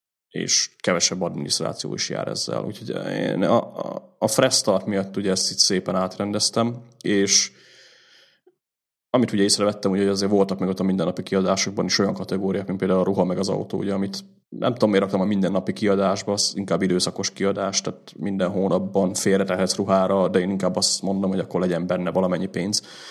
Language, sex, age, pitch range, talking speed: Hungarian, male, 30-49, 95-105 Hz, 180 wpm